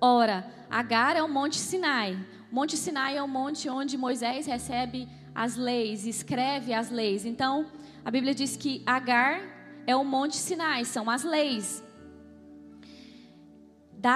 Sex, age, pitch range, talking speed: female, 20-39, 230-275 Hz, 140 wpm